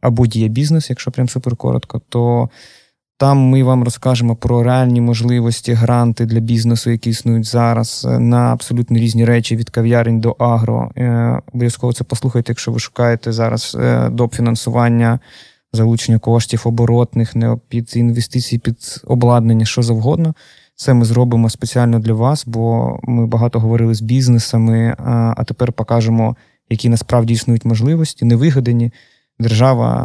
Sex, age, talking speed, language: male, 20-39, 135 wpm, Ukrainian